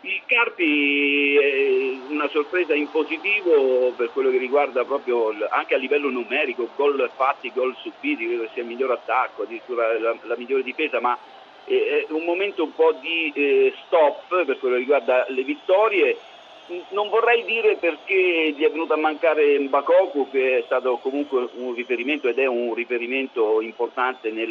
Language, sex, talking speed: Italian, male, 155 wpm